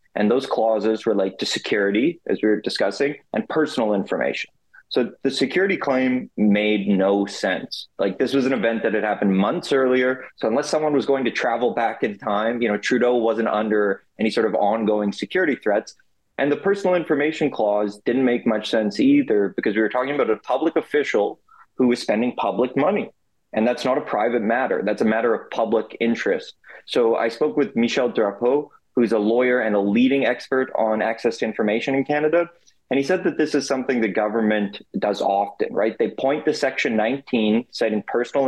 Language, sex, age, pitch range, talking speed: English, male, 20-39, 110-140 Hz, 195 wpm